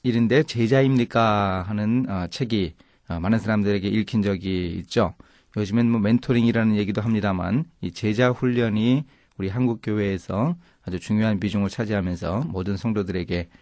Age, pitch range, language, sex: 30-49, 95-130 Hz, Korean, male